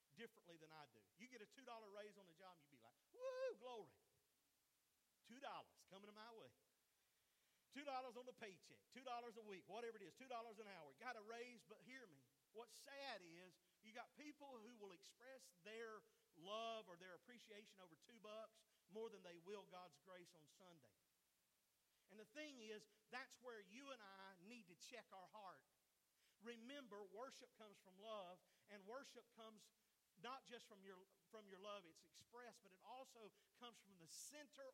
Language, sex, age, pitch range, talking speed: English, male, 40-59, 185-240 Hz, 180 wpm